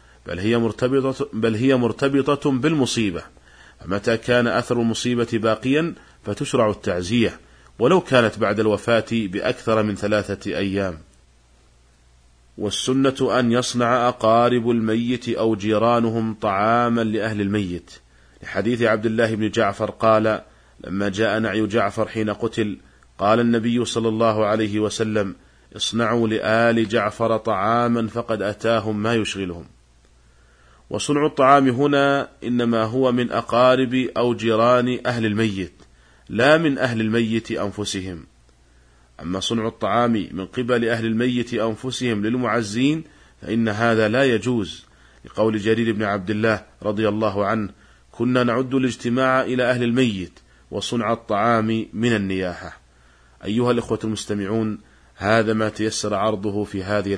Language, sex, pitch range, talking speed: Arabic, male, 95-120 Hz, 120 wpm